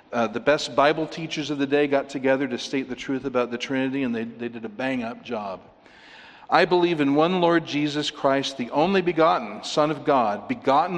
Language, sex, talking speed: English, male, 215 wpm